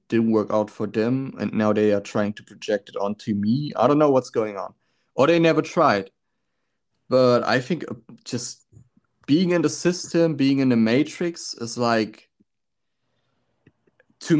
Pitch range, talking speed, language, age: 110-140 Hz, 165 wpm, English, 30-49